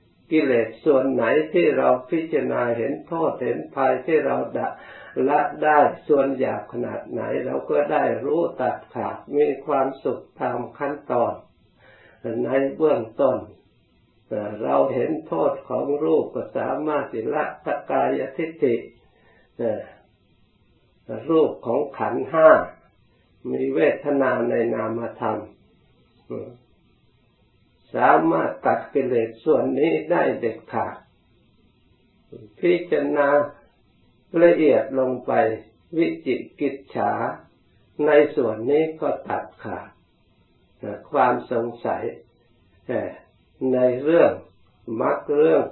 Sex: male